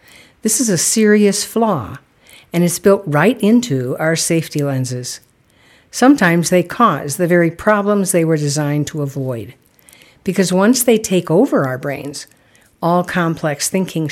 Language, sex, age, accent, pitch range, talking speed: English, female, 60-79, American, 140-200 Hz, 145 wpm